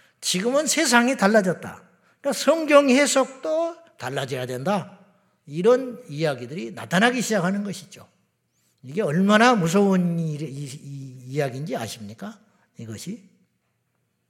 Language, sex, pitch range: Korean, male, 145-215 Hz